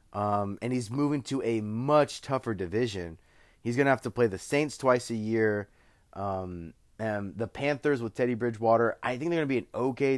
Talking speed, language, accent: 205 wpm, English, American